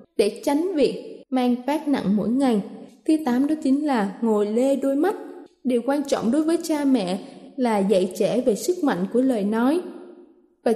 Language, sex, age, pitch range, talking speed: Vietnamese, female, 20-39, 225-295 Hz, 190 wpm